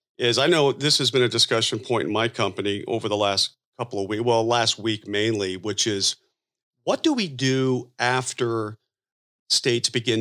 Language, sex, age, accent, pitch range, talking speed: English, male, 40-59, American, 105-130 Hz, 180 wpm